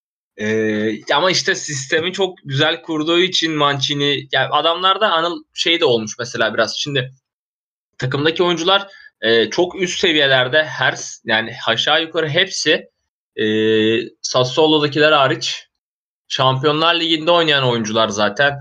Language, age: Turkish, 20-39